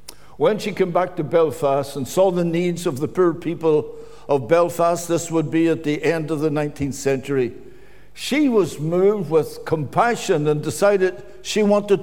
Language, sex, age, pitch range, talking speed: English, male, 60-79, 155-195 Hz, 175 wpm